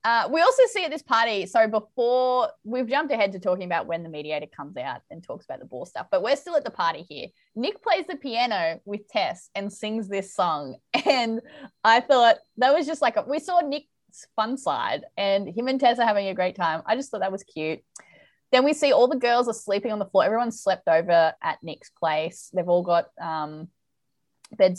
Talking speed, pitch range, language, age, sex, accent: 225 wpm, 185-250 Hz, English, 20-39, female, Australian